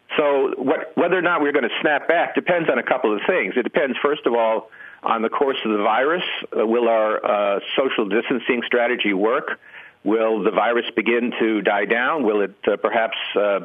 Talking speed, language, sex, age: 205 wpm, English, male, 50-69